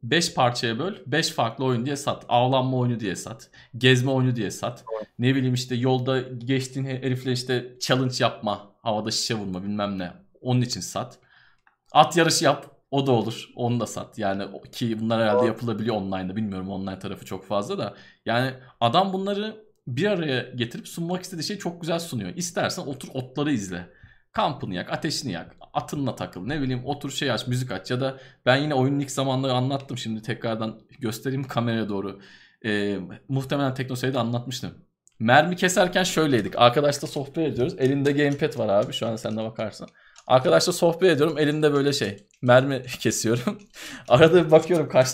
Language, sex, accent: Turkish, male, native